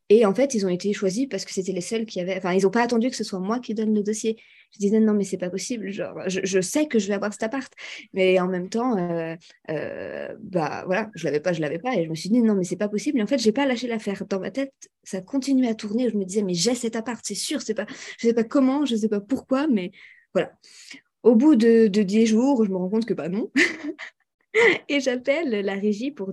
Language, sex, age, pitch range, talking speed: French, female, 20-39, 190-245 Hz, 290 wpm